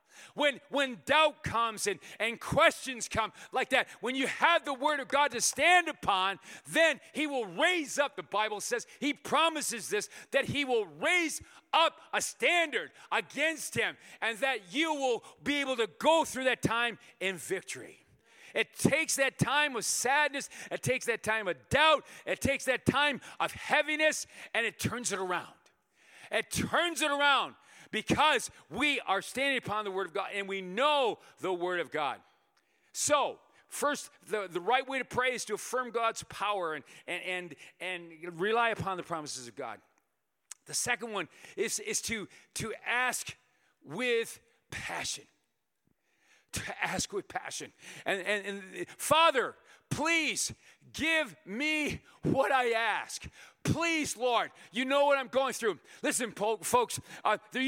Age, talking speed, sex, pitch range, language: 40-59, 160 wpm, male, 215-300 Hz, English